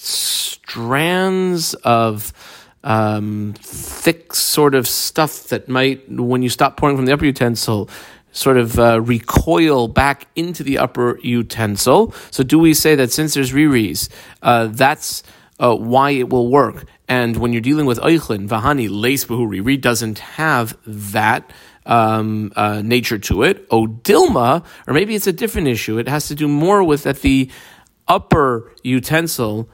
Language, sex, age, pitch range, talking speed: English, male, 40-59, 115-155 Hz, 155 wpm